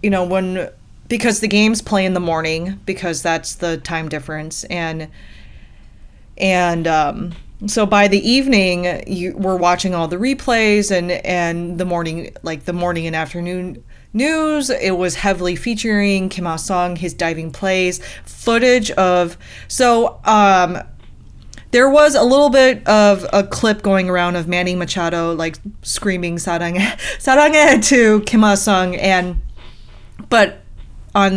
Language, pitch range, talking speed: English, 175-225 Hz, 145 wpm